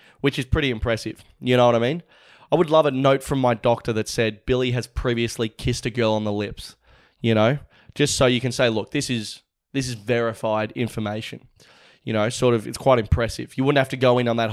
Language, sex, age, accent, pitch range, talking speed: English, male, 20-39, Australian, 115-140 Hz, 235 wpm